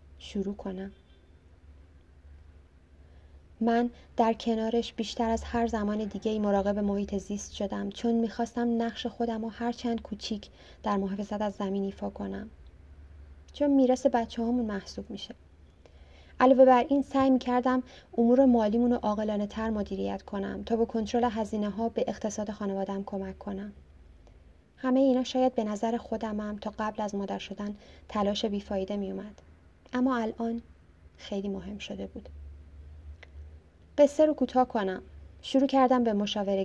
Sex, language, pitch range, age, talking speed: female, Persian, 190-230 Hz, 30-49, 140 wpm